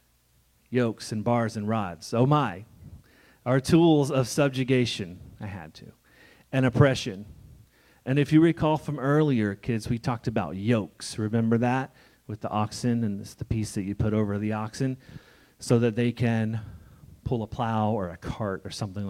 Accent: American